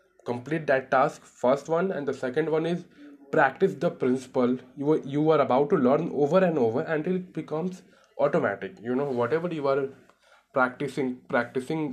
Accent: native